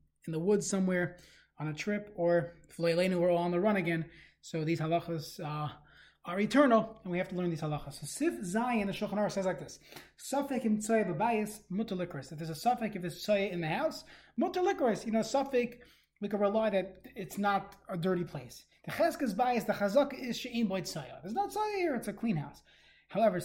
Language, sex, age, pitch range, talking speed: English, male, 20-39, 175-235 Hz, 195 wpm